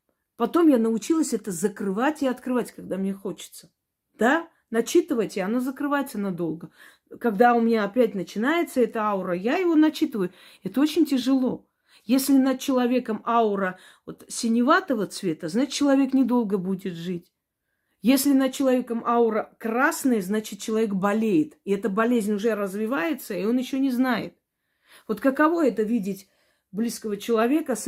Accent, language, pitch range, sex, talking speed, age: native, Russian, 205-260 Hz, female, 140 wpm, 40-59